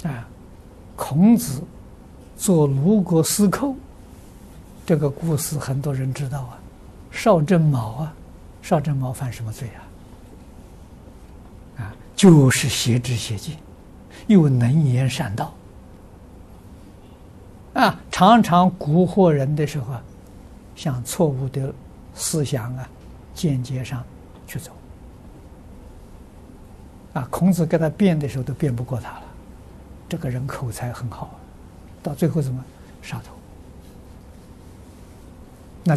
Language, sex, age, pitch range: Chinese, male, 60-79, 100-150 Hz